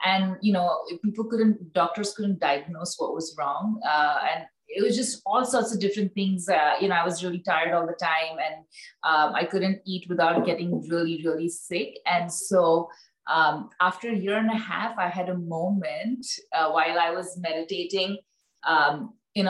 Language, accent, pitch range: English, Indian, 175-210 Hz